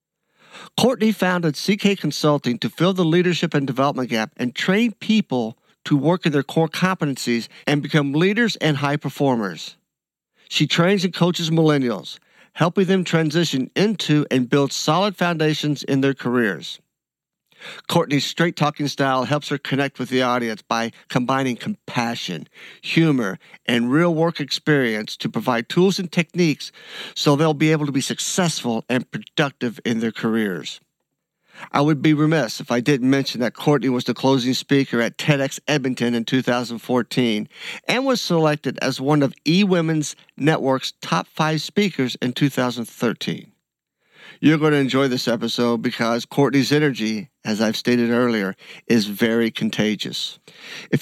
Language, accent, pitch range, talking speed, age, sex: English, American, 125-165 Hz, 150 wpm, 50-69, male